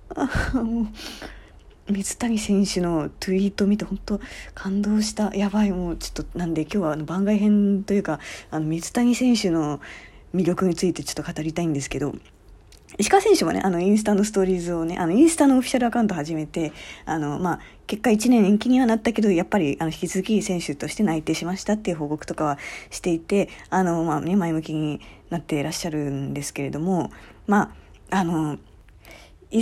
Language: Japanese